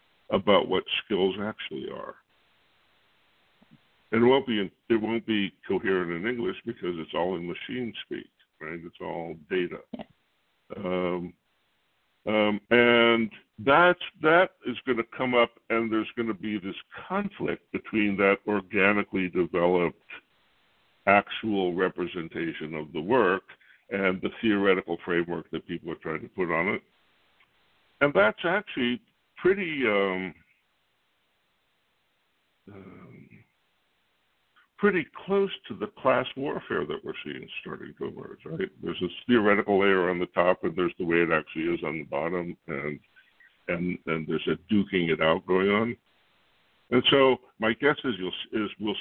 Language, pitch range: English, 90-120 Hz